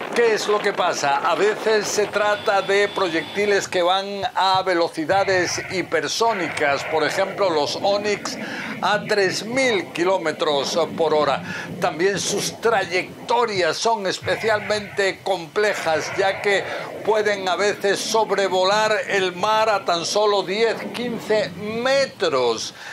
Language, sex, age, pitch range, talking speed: Spanish, male, 60-79, 185-210 Hz, 120 wpm